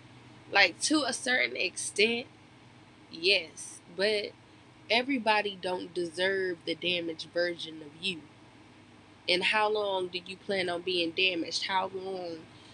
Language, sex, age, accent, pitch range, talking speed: English, female, 20-39, American, 165-205 Hz, 120 wpm